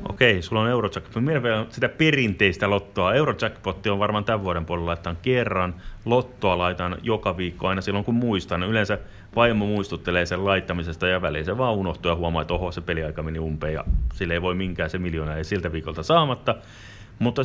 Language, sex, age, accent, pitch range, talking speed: Finnish, male, 30-49, native, 90-110 Hz, 190 wpm